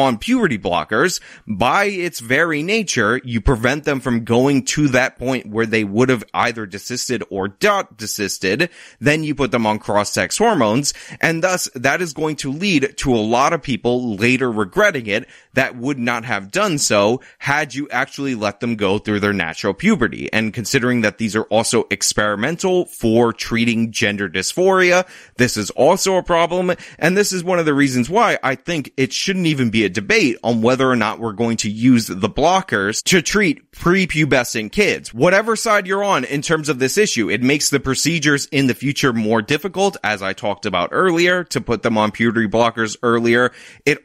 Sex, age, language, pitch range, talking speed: male, 30-49, English, 115-150 Hz, 190 wpm